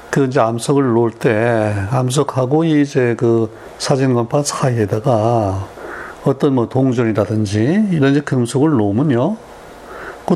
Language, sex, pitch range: Korean, male, 105-135 Hz